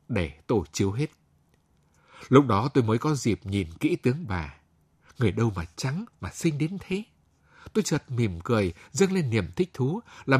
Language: Vietnamese